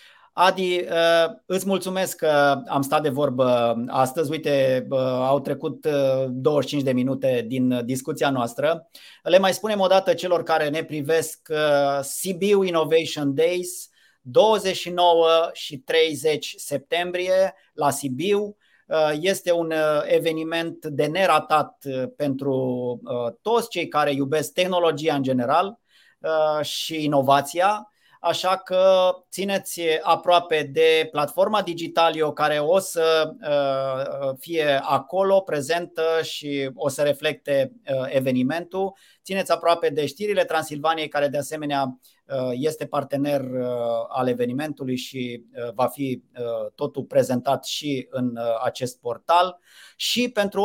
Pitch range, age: 140-180 Hz, 30-49